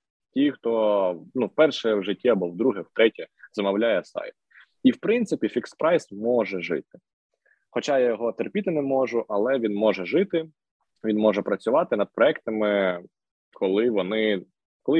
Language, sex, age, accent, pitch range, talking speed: Ukrainian, male, 20-39, native, 105-160 Hz, 145 wpm